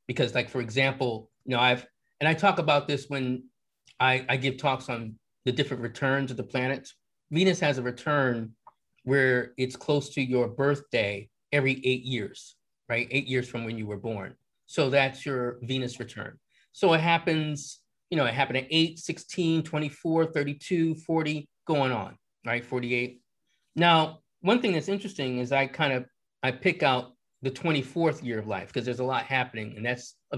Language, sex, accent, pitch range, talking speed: English, male, American, 125-165 Hz, 180 wpm